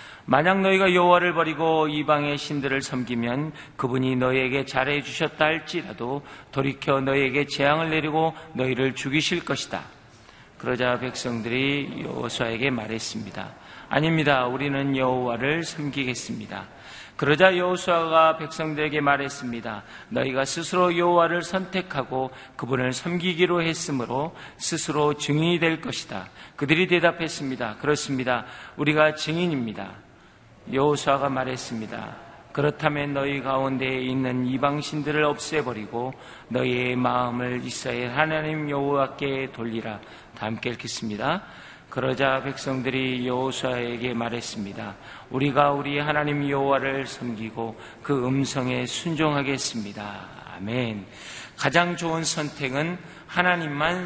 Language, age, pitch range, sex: Korean, 40-59, 125-155 Hz, male